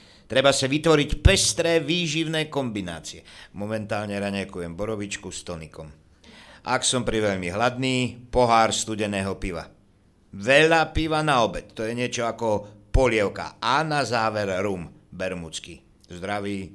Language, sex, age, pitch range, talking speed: Slovak, male, 60-79, 90-130 Hz, 120 wpm